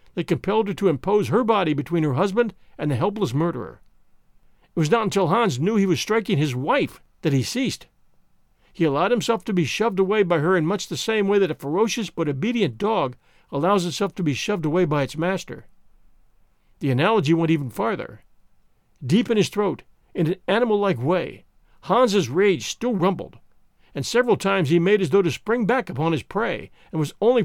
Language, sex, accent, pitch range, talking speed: English, male, American, 160-215 Hz, 195 wpm